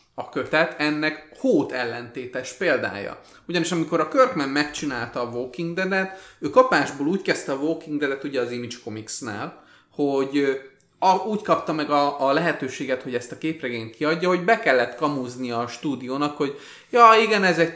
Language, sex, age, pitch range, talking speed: Hungarian, male, 30-49, 130-165 Hz, 165 wpm